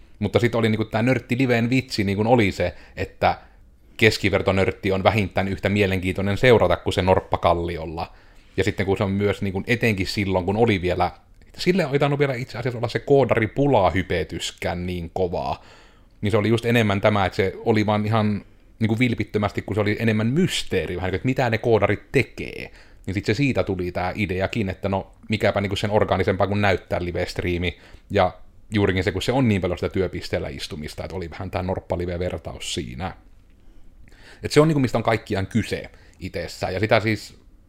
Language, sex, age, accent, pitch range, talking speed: Finnish, male, 30-49, native, 90-110 Hz, 185 wpm